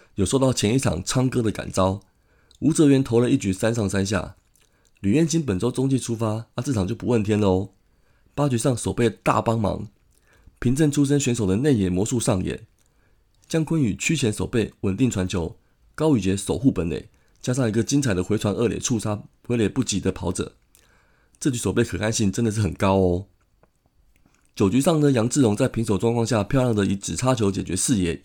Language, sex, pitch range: Chinese, male, 95-125 Hz